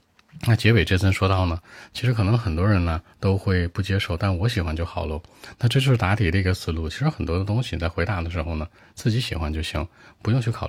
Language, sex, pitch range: Chinese, male, 85-105 Hz